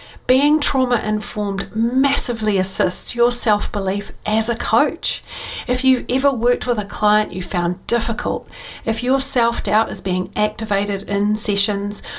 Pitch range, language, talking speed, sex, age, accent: 205-245 Hz, English, 135 wpm, female, 40-59, Australian